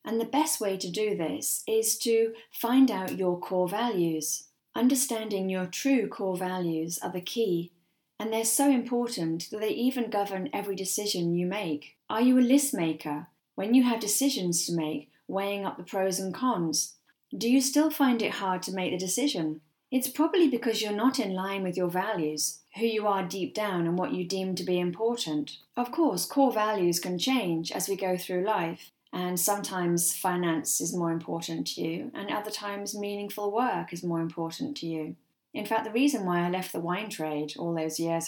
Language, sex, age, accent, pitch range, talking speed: English, female, 40-59, British, 170-215 Hz, 195 wpm